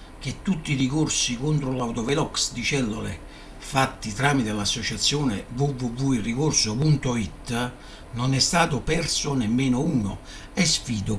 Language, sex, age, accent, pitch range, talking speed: Italian, male, 60-79, native, 110-160 Hz, 105 wpm